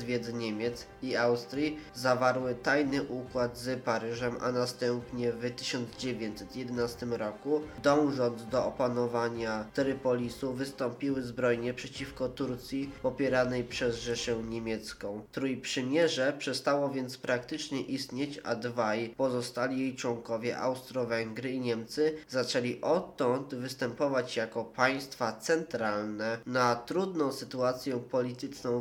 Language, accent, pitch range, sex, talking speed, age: Polish, native, 120-135 Hz, male, 100 wpm, 20-39